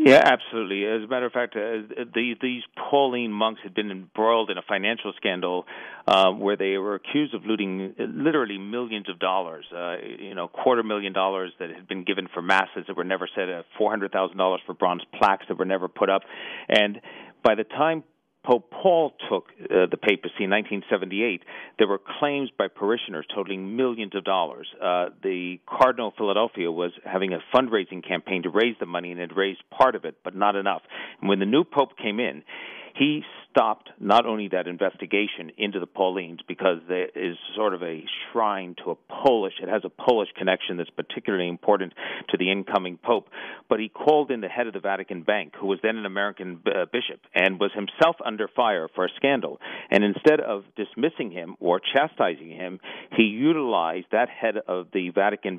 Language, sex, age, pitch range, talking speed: English, male, 40-59, 95-115 Hz, 195 wpm